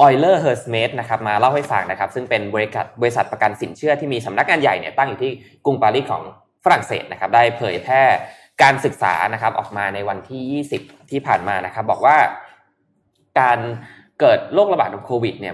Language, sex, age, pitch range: Thai, male, 20-39, 105-140 Hz